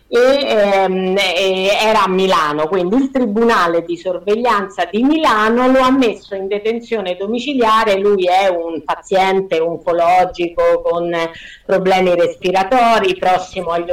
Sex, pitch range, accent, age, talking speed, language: female, 190-275 Hz, native, 50-69, 120 wpm, Italian